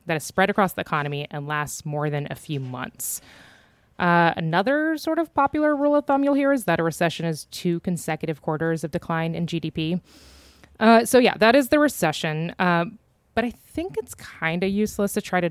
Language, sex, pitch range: English, female, 155-200 Hz